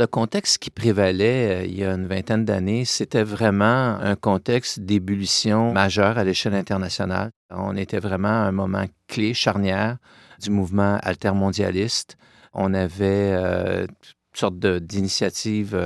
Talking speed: 135 wpm